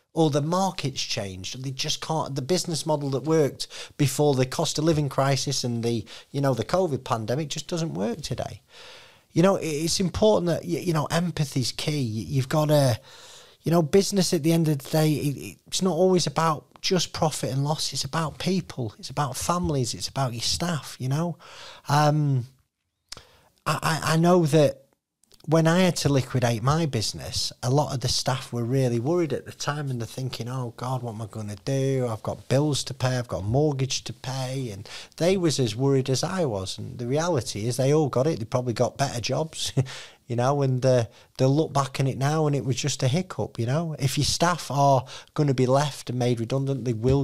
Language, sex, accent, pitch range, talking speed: English, male, British, 125-155 Hz, 210 wpm